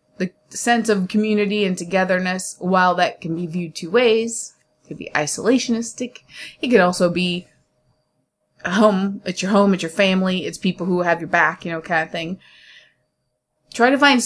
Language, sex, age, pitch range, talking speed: English, female, 20-39, 180-230 Hz, 175 wpm